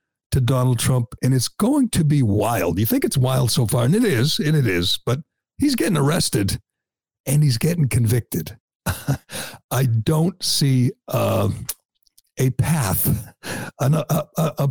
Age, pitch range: 60-79, 120-160 Hz